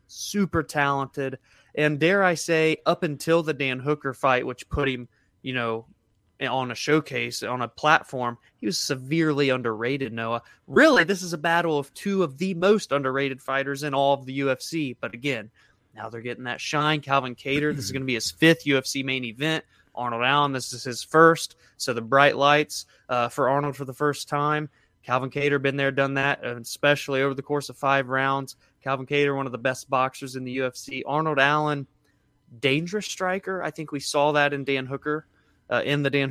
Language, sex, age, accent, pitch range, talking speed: English, male, 20-39, American, 130-155 Hz, 200 wpm